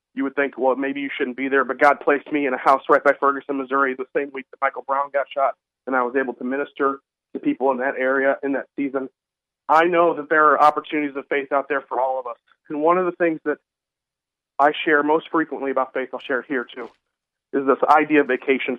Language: English